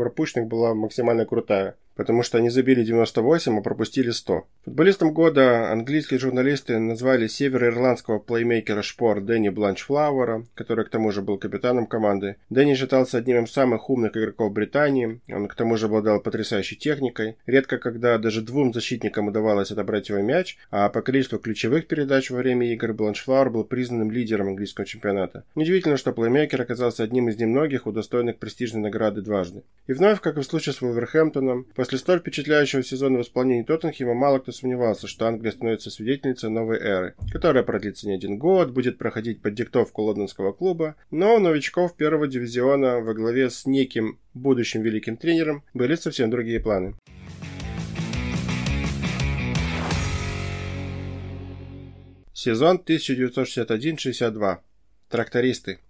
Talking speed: 140 wpm